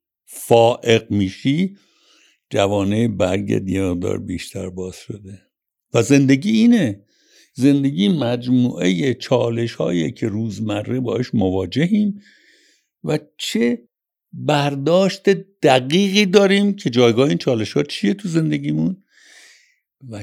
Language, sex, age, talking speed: Persian, male, 60-79, 100 wpm